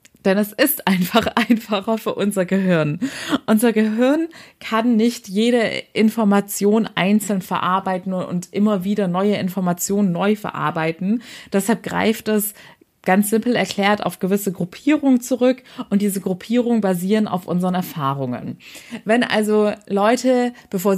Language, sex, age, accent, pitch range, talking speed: German, female, 30-49, German, 185-225 Hz, 125 wpm